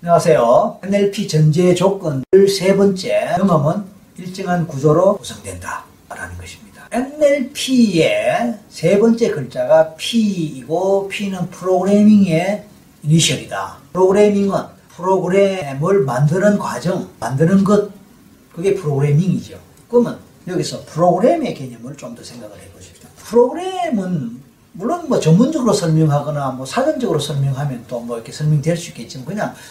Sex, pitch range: male, 145-210 Hz